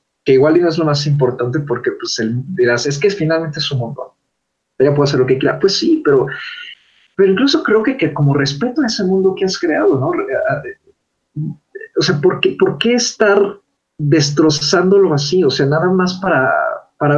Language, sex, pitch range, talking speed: Spanish, male, 145-215 Hz, 200 wpm